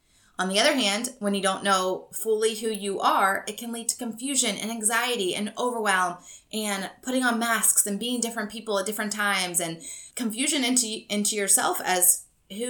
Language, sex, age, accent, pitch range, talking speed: English, female, 20-39, American, 180-225 Hz, 185 wpm